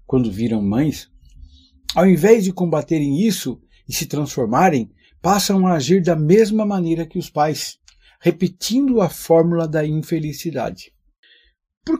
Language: Portuguese